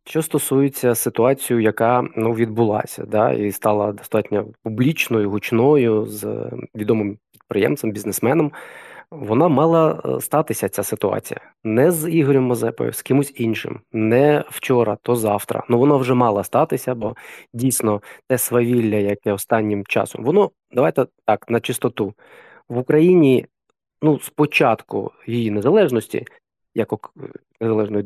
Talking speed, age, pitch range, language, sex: 120 wpm, 20-39, 110-135 Hz, Ukrainian, male